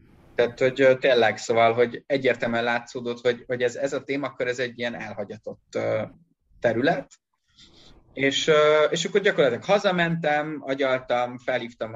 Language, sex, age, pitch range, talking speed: Hungarian, male, 30-49, 115-135 Hz, 130 wpm